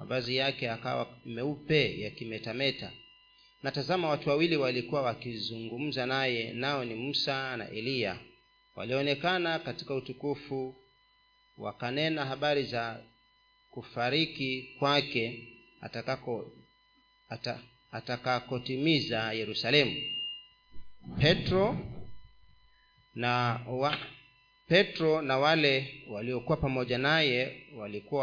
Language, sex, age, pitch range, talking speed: Swahili, male, 40-59, 125-160 Hz, 85 wpm